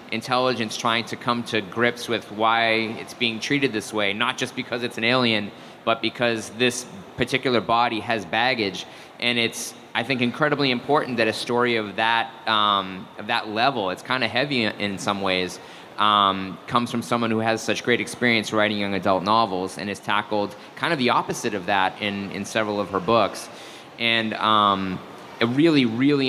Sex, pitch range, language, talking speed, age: male, 105-120 Hz, English, 185 wpm, 20-39